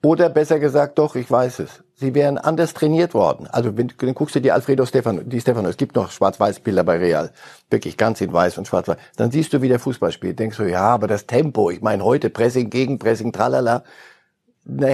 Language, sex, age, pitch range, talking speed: German, male, 60-79, 120-150 Hz, 215 wpm